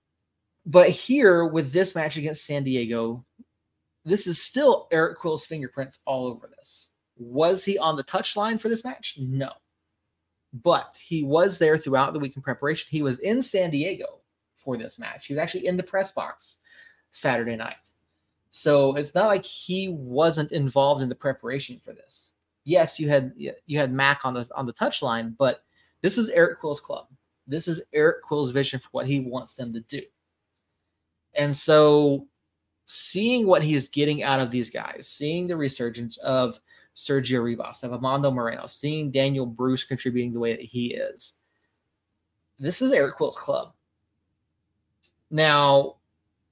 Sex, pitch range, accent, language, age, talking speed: male, 115-155 Hz, American, English, 30-49, 165 wpm